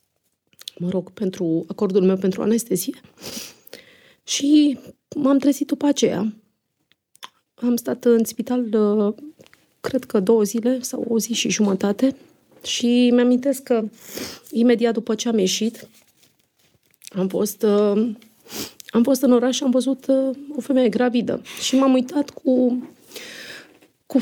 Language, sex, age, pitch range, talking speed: Romanian, female, 30-49, 205-250 Hz, 125 wpm